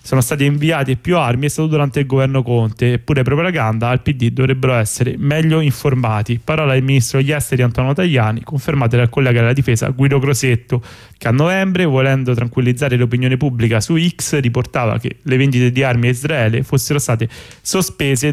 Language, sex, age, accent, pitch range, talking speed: Italian, male, 20-39, native, 115-140 Hz, 175 wpm